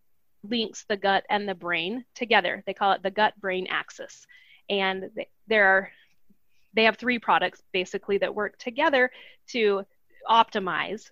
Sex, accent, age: female, American, 30-49